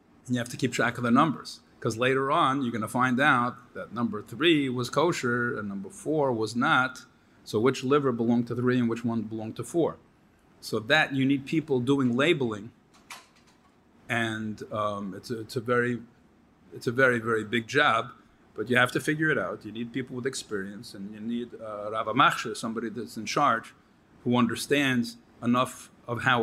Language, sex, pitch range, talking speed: English, male, 110-135 Hz, 195 wpm